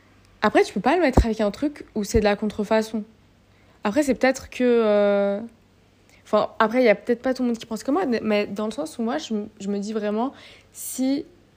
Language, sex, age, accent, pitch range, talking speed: French, female, 20-39, French, 200-235 Hz, 230 wpm